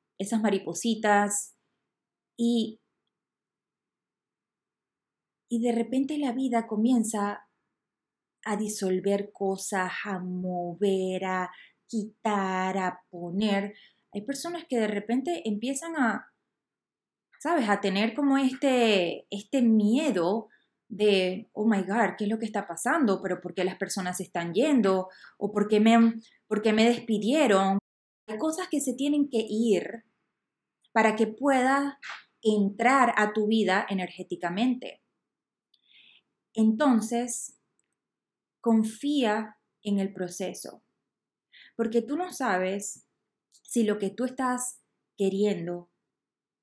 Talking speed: 110 wpm